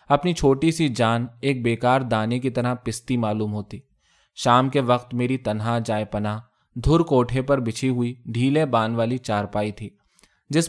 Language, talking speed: Urdu, 170 wpm